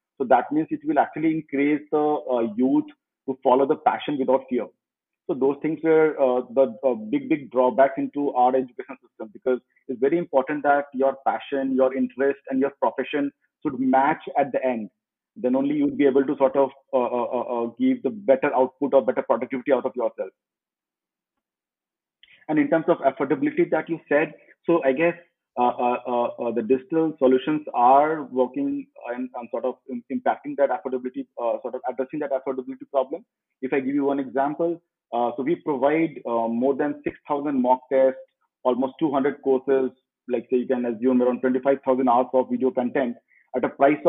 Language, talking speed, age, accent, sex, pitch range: Telugu, 185 wpm, 40-59, native, male, 130-150 Hz